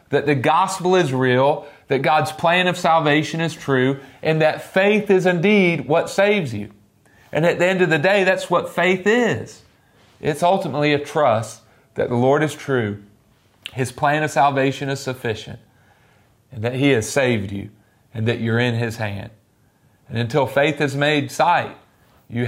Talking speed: 175 wpm